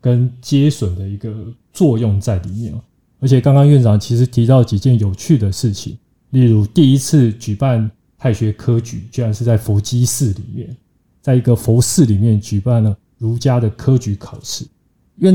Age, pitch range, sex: 20-39, 110-135 Hz, male